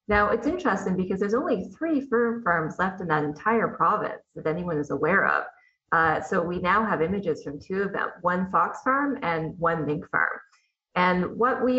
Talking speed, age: 200 wpm, 20-39